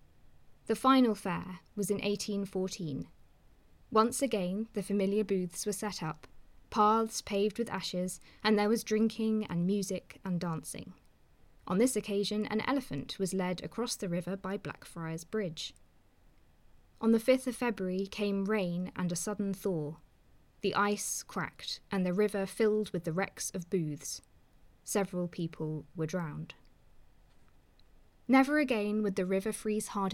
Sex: female